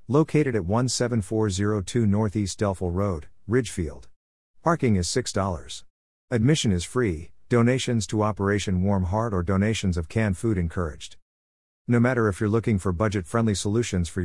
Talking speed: 140 wpm